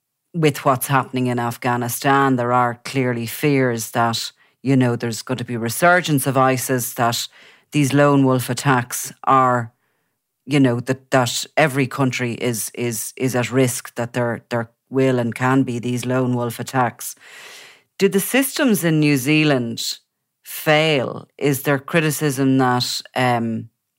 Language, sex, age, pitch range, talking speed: English, female, 30-49, 125-145 Hz, 150 wpm